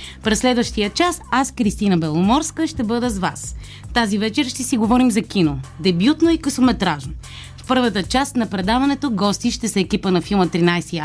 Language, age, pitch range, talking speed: Bulgarian, 20-39, 185-255 Hz, 175 wpm